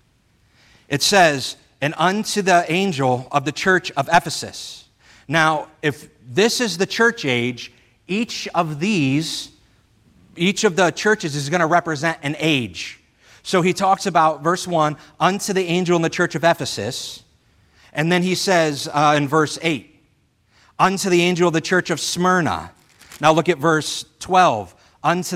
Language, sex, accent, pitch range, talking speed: English, male, American, 130-175 Hz, 160 wpm